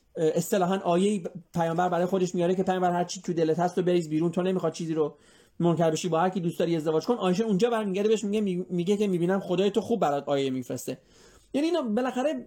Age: 30-49